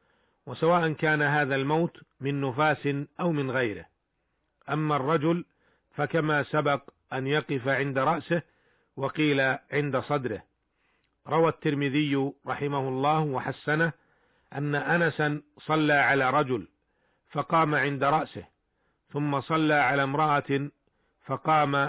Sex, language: male, Arabic